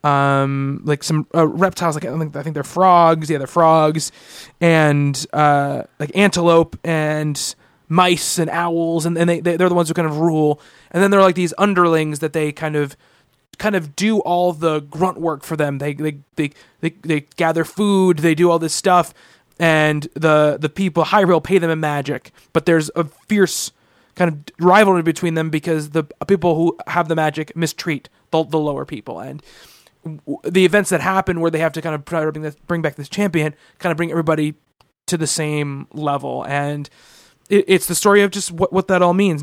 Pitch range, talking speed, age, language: 155-180 Hz, 200 wpm, 20-39, English